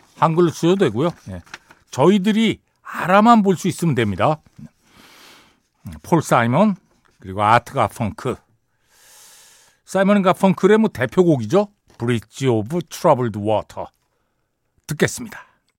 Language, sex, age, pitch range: Korean, male, 60-79, 115-180 Hz